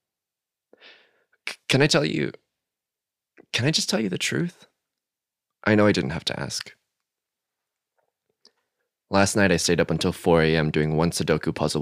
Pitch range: 80-110 Hz